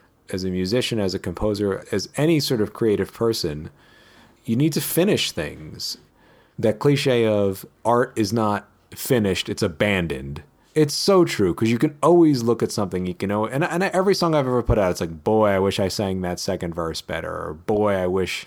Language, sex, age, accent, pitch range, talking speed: English, male, 30-49, American, 90-120 Hz, 195 wpm